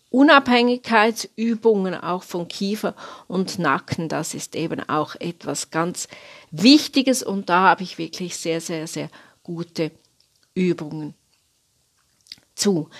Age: 40-59